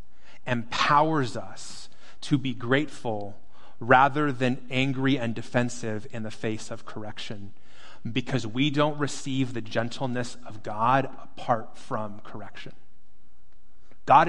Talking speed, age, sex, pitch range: 115 wpm, 30-49, male, 100-130 Hz